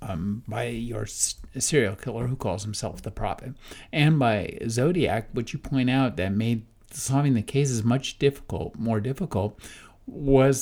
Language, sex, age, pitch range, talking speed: English, male, 50-69, 105-135 Hz, 155 wpm